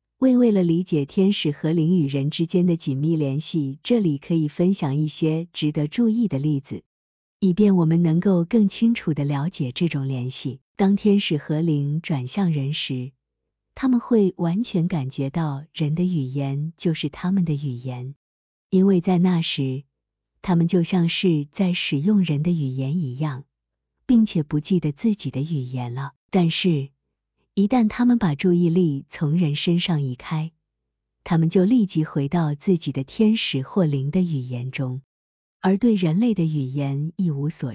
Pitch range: 140-185 Hz